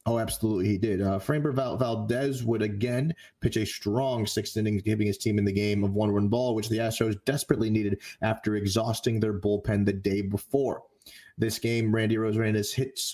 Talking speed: 190 wpm